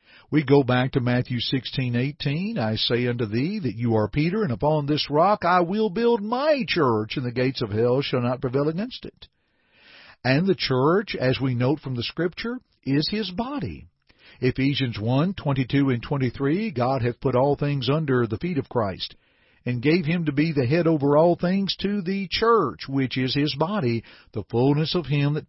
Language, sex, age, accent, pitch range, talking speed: English, male, 50-69, American, 125-180 Hz, 195 wpm